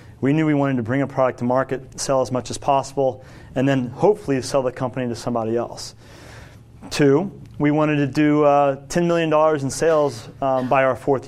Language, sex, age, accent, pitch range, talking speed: English, male, 30-49, American, 120-145 Hz, 200 wpm